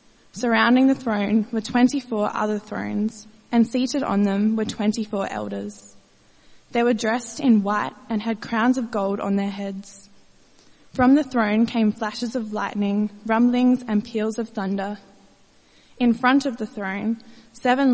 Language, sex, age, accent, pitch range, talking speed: English, female, 20-39, Australian, 205-235 Hz, 150 wpm